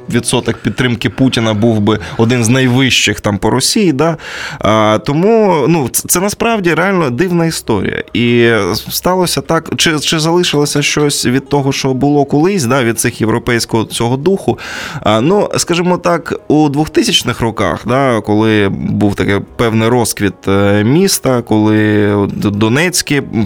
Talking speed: 140 wpm